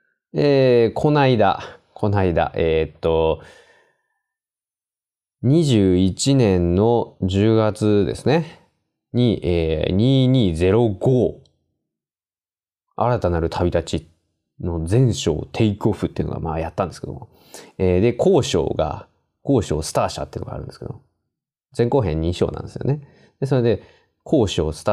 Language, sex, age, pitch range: Japanese, male, 20-39, 90-120 Hz